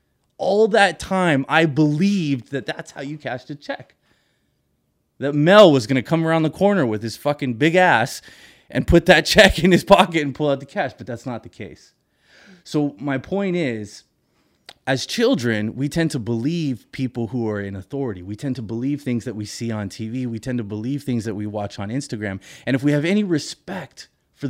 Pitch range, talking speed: 120-170 Hz, 205 wpm